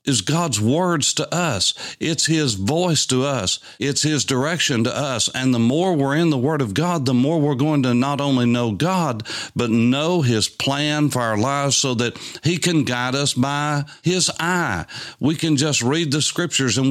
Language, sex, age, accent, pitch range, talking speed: English, male, 60-79, American, 110-150 Hz, 200 wpm